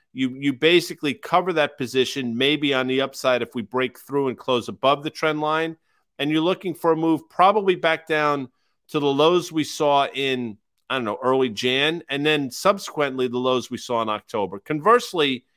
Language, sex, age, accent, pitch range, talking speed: English, male, 50-69, American, 125-160 Hz, 195 wpm